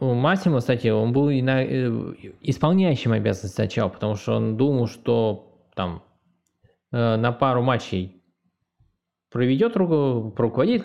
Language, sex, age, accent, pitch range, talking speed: Russian, male, 20-39, native, 110-140 Hz, 100 wpm